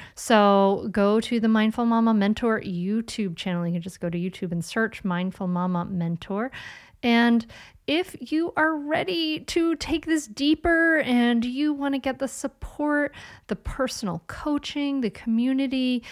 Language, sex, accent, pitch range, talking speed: English, female, American, 190-250 Hz, 155 wpm